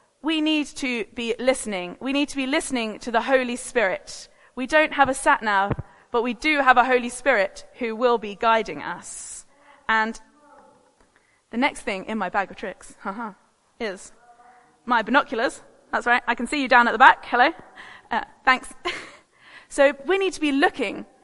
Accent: British